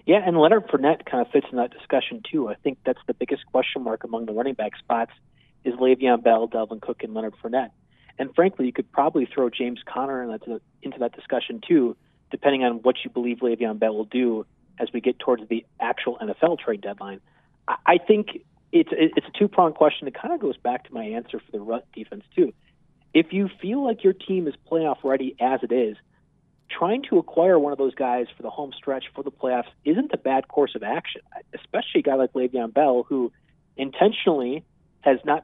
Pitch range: 120-180 Hz